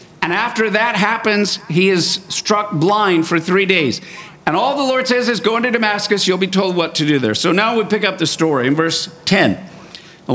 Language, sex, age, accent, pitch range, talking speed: English, male, 50-69, American, 170-210 Hz, 220 wpm